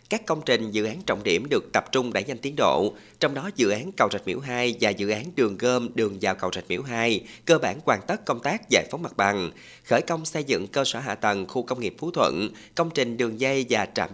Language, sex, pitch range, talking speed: Vietnamese, male, 110-140 Hz, 265 wpm